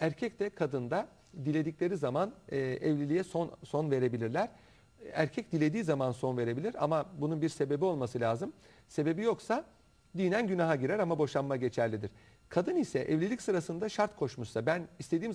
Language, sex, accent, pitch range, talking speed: Turkish, male, native, 130-185 Hz, 140 wpm